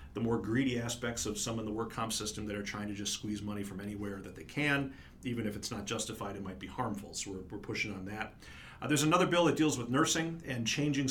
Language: English